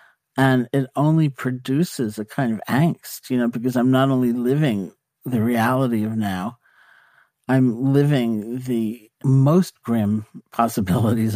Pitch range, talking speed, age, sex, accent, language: 110-135 Hz, 130 wpm, 50-69, male, American, English